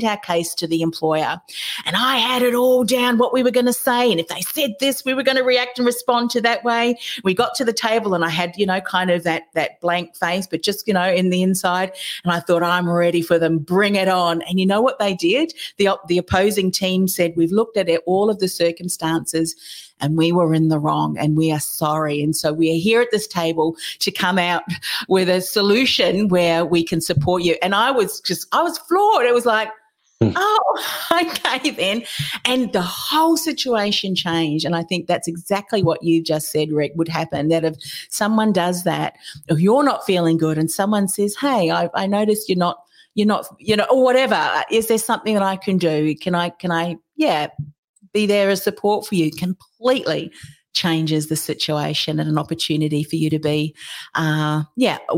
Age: 40-59